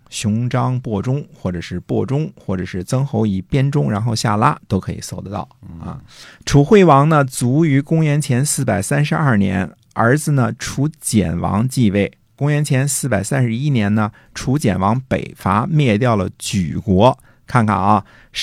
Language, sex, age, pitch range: Chinese, male, 50-69, 95-130 Hz